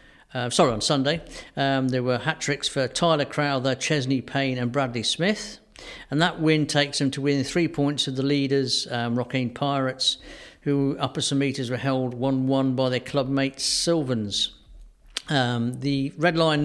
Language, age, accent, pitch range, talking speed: English, 50-69, British, 130-150 Hz, 165 wpm